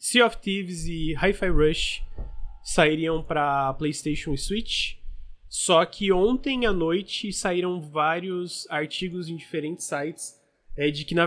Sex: male